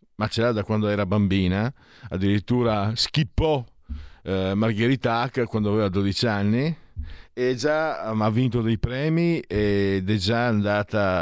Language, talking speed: Italian, 145 wpm